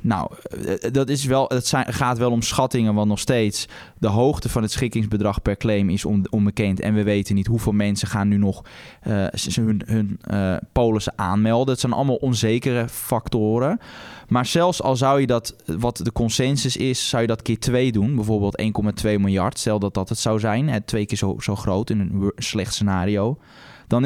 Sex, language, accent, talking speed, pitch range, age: male, Dutch, Dutch, 190 wpm, 105-125 Hz, 20-39